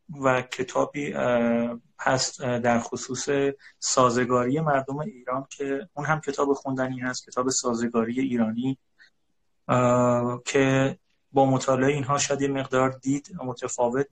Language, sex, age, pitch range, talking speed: Persian, male, 30-49, 120-135 Hz, 110 wpm